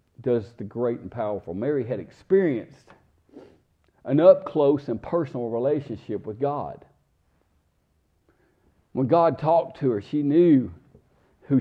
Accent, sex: American, male